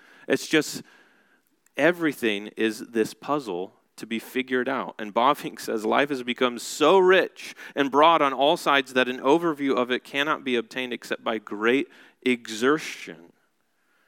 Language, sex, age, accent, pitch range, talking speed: English, male, 30-49, American, 110-140 Hz, 155 wpm